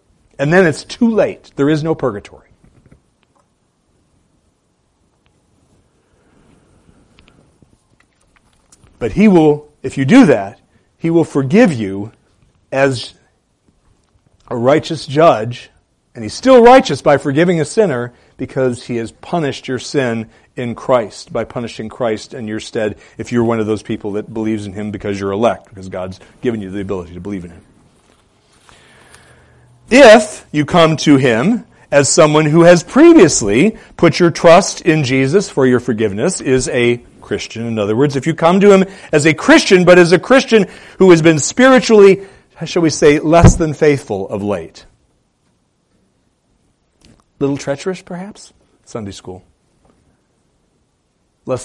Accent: American